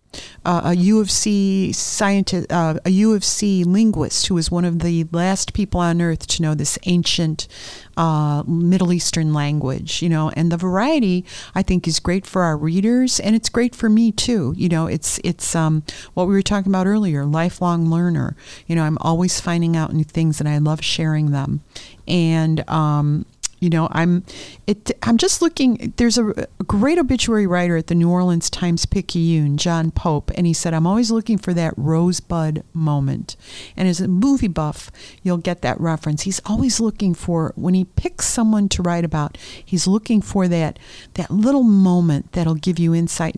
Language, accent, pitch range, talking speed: English, American, 160-195 Hz, 190 wpm